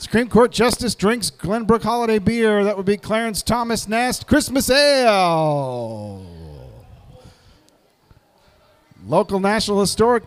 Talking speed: 105 wpm